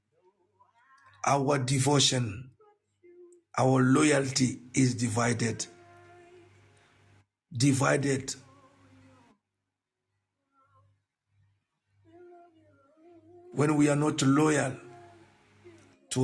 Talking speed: 50 wpm